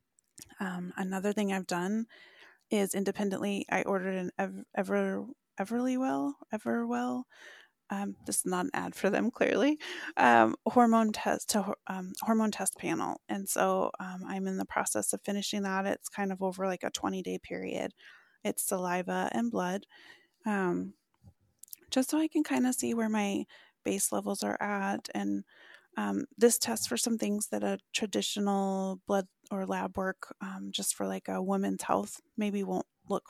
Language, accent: English, American